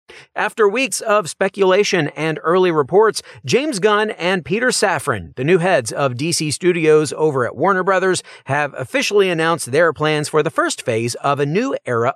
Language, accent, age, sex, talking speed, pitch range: English, American, 40-59, male, 175 wpm, 140-195 Hz